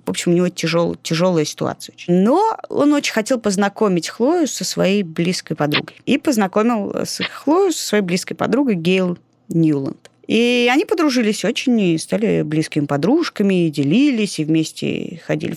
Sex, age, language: female, 20-39, Russian